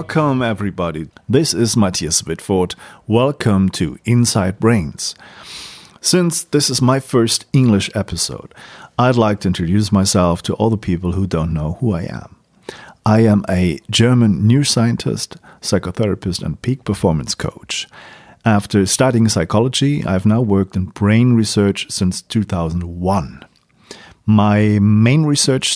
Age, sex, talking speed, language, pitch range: 40-59, male, 130 wpm, German, 95-120 Hz